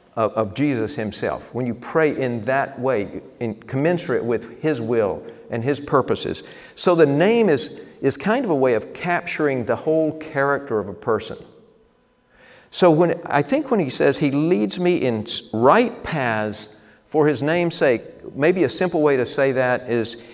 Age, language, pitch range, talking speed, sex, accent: 50-69, English, 115-160 Hz, 175 wpm, male, American